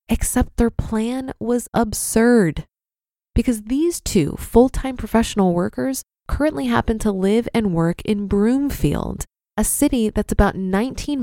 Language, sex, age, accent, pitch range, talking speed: English, female, 20-39, American, 185-250 Hz, 130 wpm